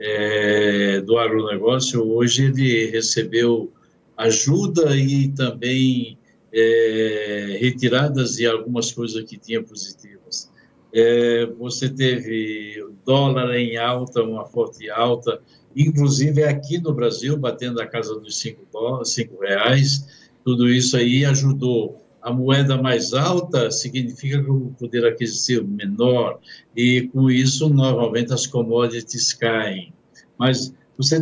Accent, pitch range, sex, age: Brazilian, 115-140 Hz, male, 60-79